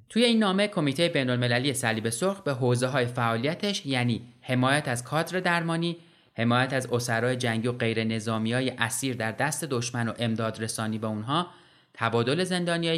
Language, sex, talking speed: Persian, male, 155 wpm